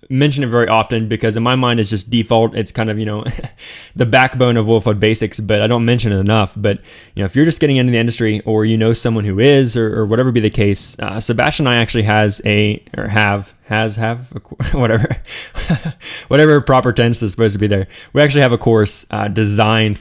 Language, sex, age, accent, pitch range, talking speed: English, male, 20-39, American, 105-125 Hz, 230 wpm